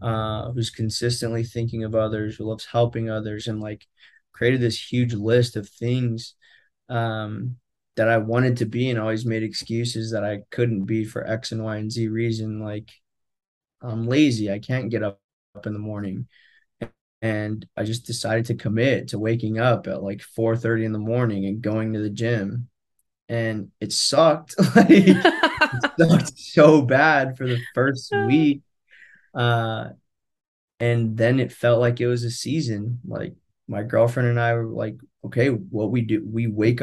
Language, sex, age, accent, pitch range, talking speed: English, male, 20-39, American, 110-120 Hz, 175 wpm